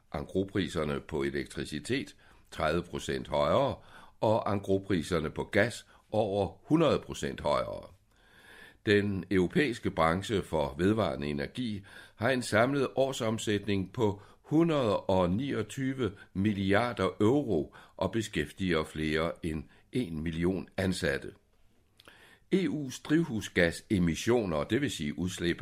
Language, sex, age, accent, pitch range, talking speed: Danish, male, 60-79, native, 85-110 Hz, 85 wpm